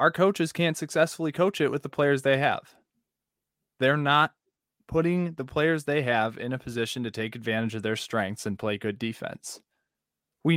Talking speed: 180 wpm